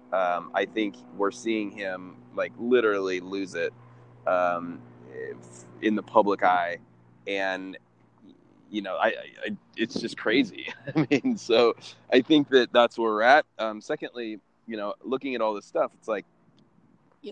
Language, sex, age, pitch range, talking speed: English, male, 20-39, 95-130 Hz, 160 wpm